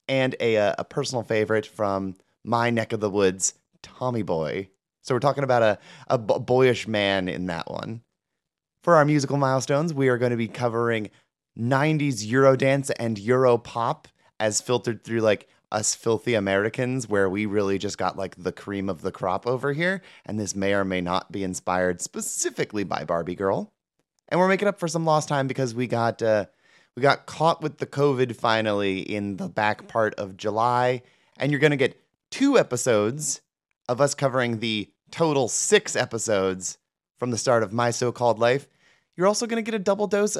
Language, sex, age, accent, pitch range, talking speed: English, male, 30-49, American, 105-145 Hz, 185 wpm